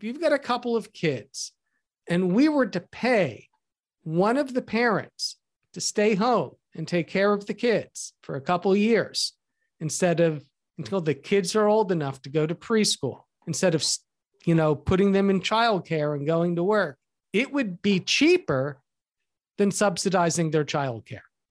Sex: male